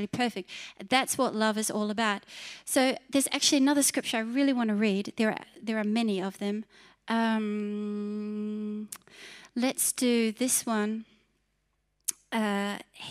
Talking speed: 135 wpm